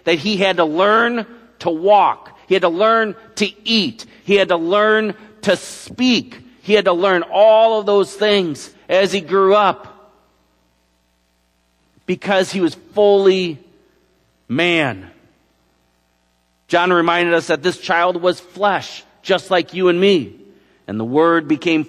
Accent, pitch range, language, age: American, 135-180 Hz, English, 50-69